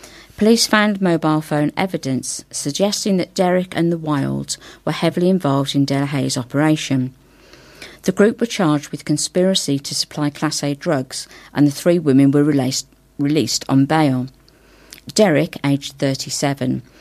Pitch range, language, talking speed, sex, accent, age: 135-170 Hz, English, 140 wpm, female, British, 40-59